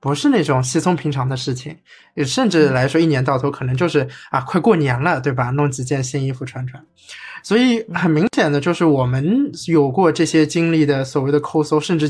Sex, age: male, 20-39